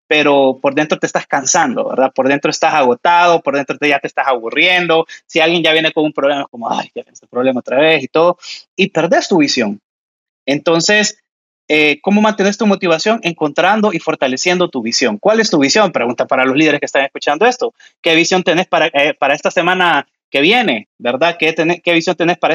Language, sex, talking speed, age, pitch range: Spanish, male, 215 wpm, 30-49, 140-185 Hz